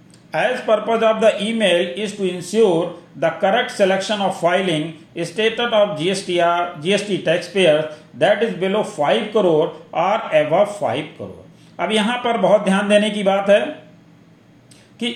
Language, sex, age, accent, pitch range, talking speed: Hindi, male, 50-69, native, 165-215 Hz, 160 wpm